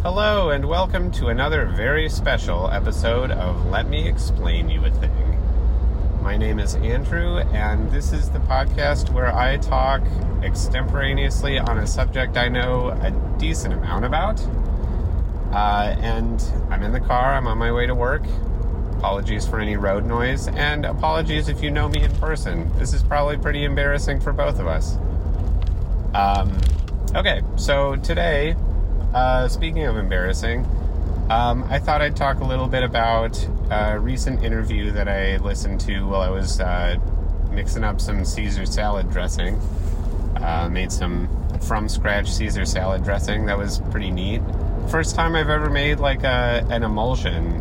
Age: 30-49